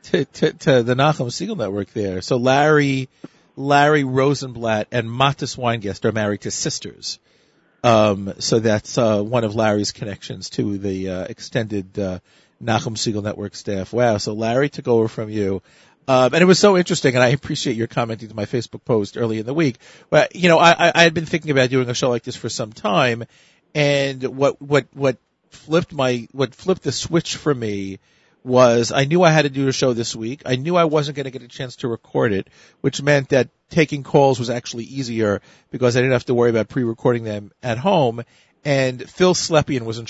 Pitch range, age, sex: 110-135 Hz, 40-59, male